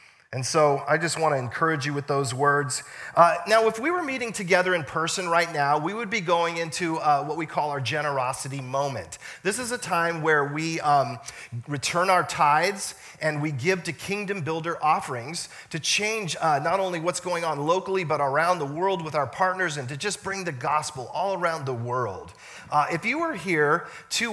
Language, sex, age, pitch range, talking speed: English, male, 40-59, 140-180 Hz, 200 wpm